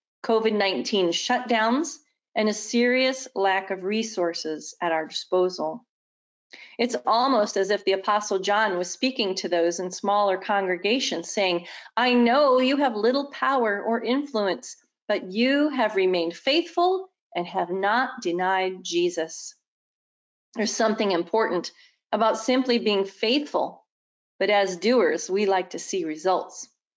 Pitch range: 185-250 Hz